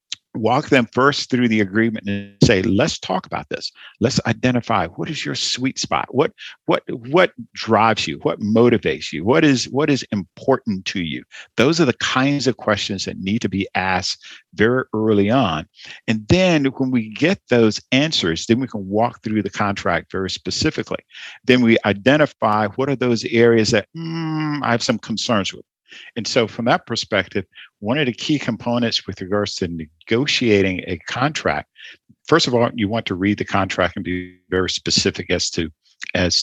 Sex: male